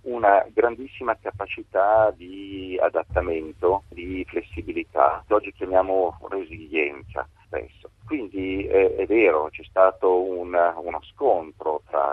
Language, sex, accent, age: Italian, male, native, 40-59